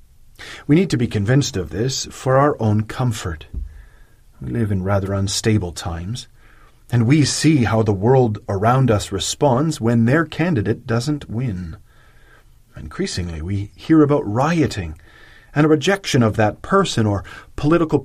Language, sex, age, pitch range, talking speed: English, male, 40-59, 100-135 Hz, 145 wpm